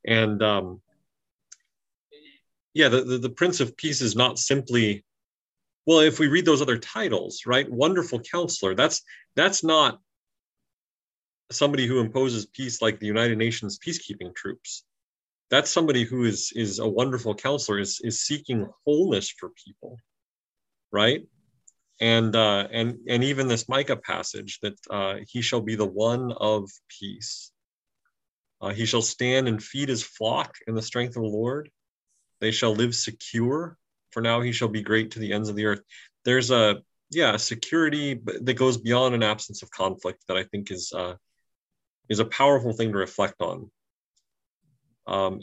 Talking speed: 160 wpm